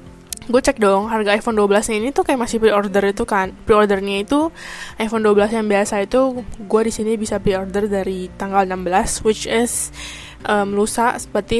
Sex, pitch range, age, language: female, 200-235 Hz, 10-29, Indonesian